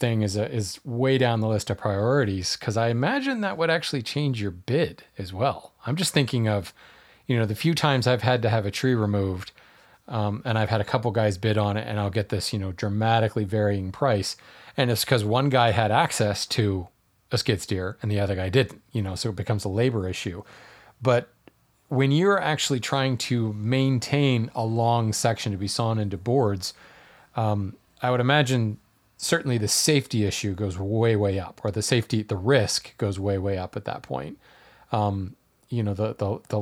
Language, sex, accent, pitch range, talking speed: English, male, American, 105-130 Hz, 205 wpm